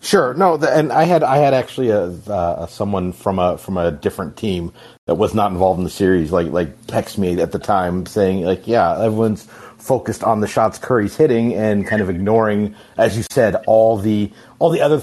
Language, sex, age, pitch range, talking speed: English, male, 30-49, 95-125 Hz, 210 wpm